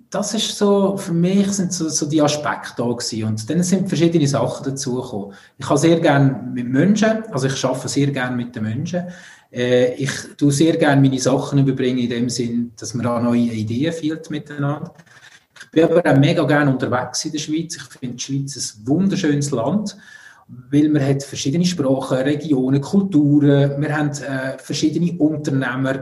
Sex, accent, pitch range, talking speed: male, Austrian, 130-165 Hz, 180 wpm